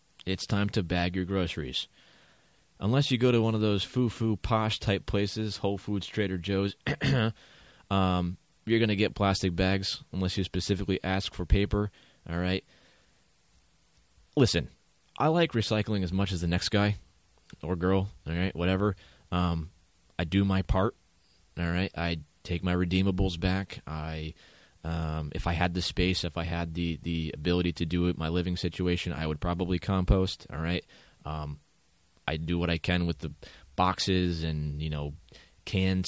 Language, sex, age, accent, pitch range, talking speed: English, male, 20-39, American, 85-95 Hz, 170 wpm